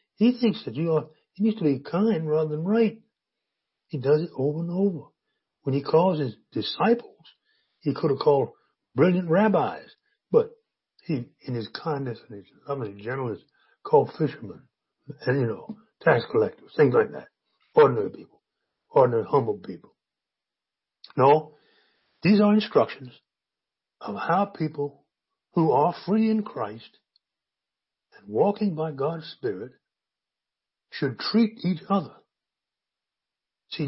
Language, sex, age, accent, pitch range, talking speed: English, male, 60-79, American, 150-240 Hz, 135 wpm